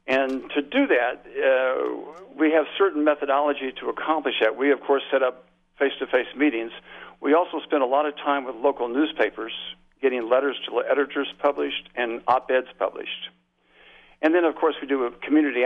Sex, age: male, 60-79